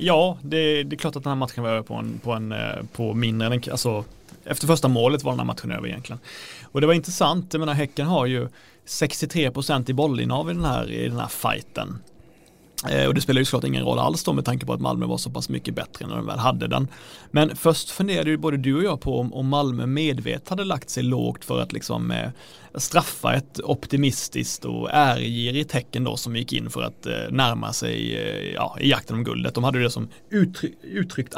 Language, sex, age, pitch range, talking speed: Swedish, male, 30-49, 120-160 Hz, 215 wpm